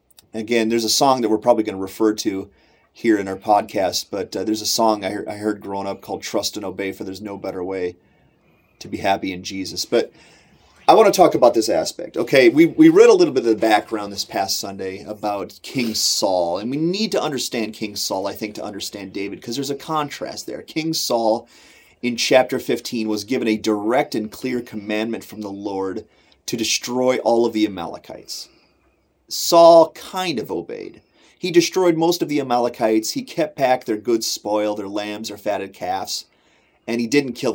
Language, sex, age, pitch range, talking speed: English, male, 30-49, 105-150 Hz, 200 wpm